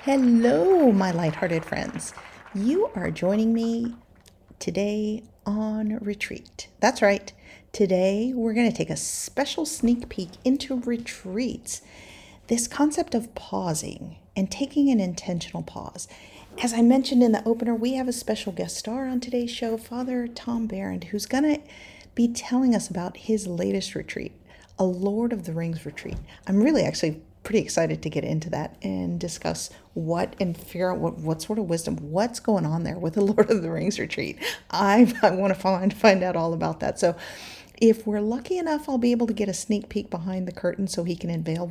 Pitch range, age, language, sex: 175-235 Hz, 40-59, English, female